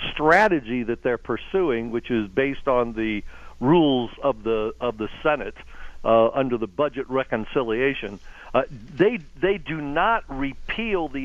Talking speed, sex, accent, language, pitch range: 145 wpm, male, American, English, 120-155 Hz